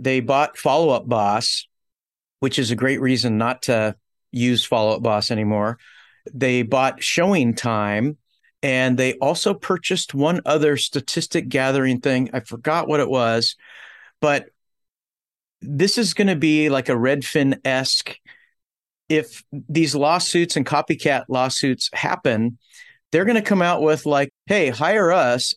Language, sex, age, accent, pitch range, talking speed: English, male, 40-59, American, 125-150 Hz, 140 wpm